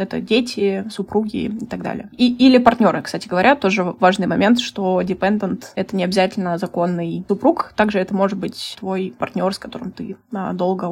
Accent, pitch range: native, 190-220 Hz